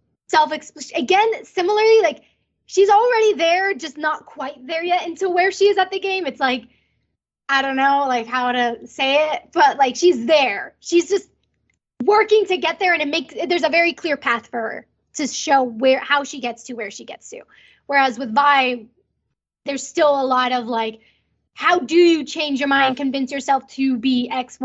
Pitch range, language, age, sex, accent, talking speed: 245-320 Hz, English, 10-29, female, American, 195 wpm